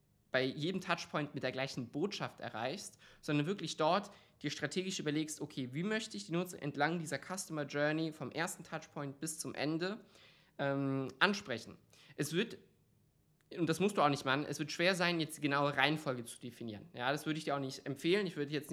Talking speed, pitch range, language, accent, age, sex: 200 wpm, 135-165 Hz, German, German, 20-39, male